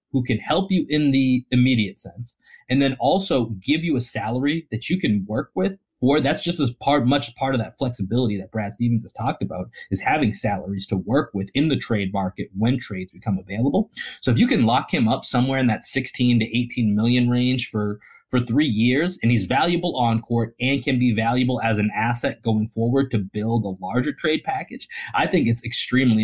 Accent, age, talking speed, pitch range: American, 30-49, 215 wpm, 110-135 Hz